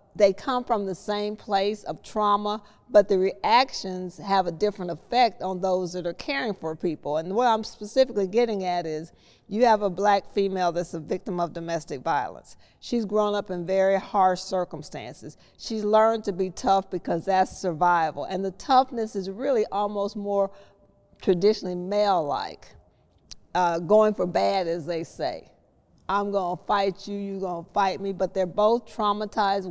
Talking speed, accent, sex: 165 wpm, American, female